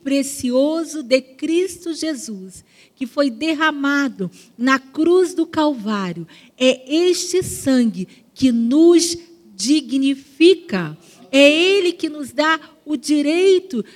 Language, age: Portuguese, 40-59